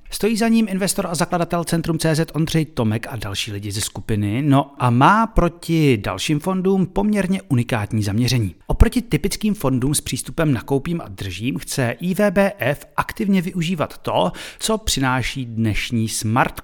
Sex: male